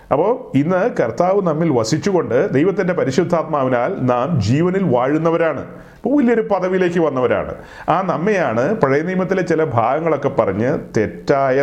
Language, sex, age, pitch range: Malayalam, male, 30-49, 115-165 Hz